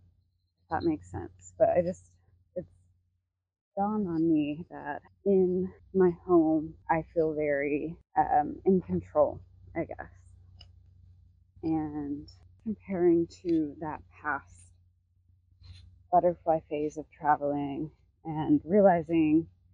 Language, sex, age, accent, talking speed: English, female, 20-39, American, 100 wpm